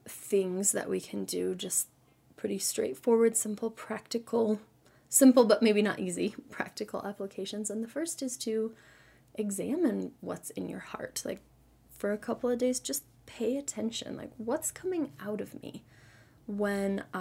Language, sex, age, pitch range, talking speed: English, female, 20-39, 195-225 Hz, 150 wpm